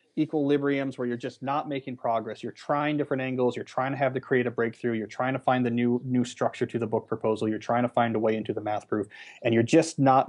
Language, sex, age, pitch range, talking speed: English, male, 30-49, 115-140 Hz, 255 wpm